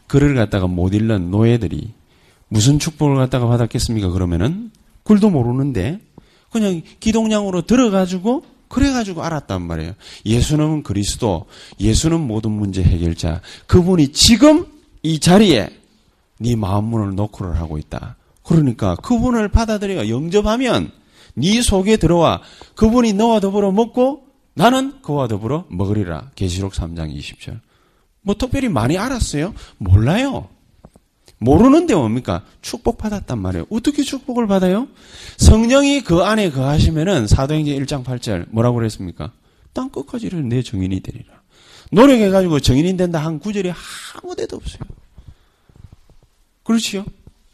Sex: male